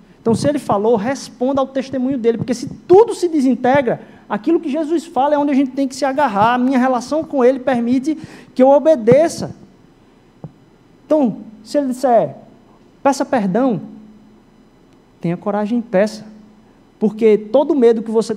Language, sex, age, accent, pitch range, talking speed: Portuguese, male, 20-39, Brazilian, 225-305 Hz, 160 wpm